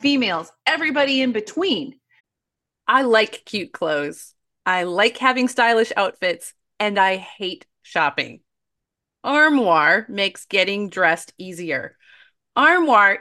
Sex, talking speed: female, 105 wpm